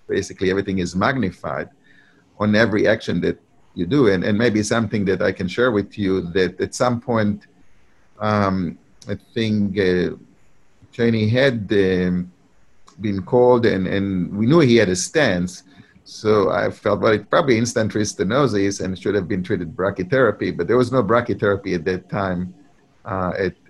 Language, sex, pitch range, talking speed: English, male, 95-115 Hz, 165 wpm